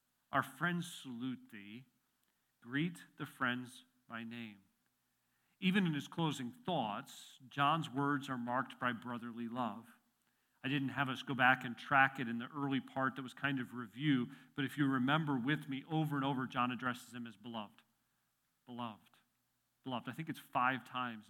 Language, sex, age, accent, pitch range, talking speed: English, male, 40-59, American, 130-175 Hz, 170 wpm